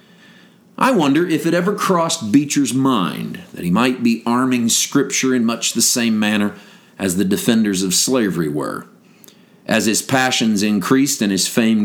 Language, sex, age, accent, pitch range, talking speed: English, male, 50-69, American, 120-190 Hz, 160 wpm